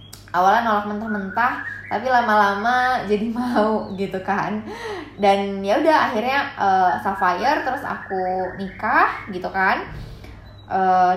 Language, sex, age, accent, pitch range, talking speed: Indonesian, female, 20-39, native, 180-225 Hz, 115 wpm